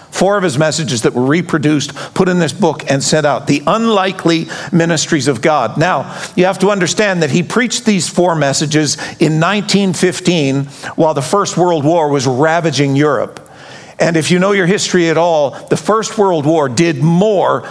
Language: English